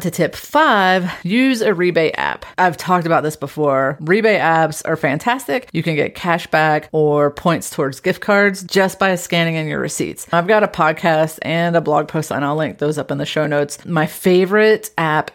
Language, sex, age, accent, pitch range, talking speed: English, female, 30-49, American, 155-185 Hz, 205 wpm